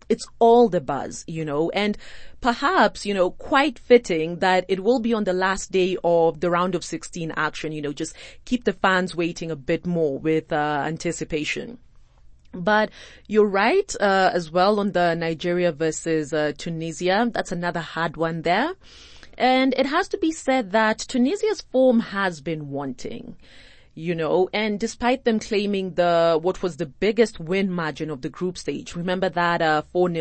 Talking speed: 175 wpm